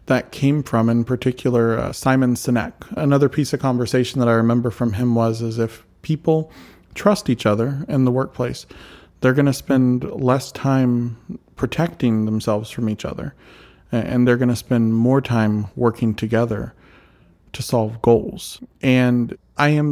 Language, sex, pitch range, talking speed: English, male, 115-130 Hz, 160 wpm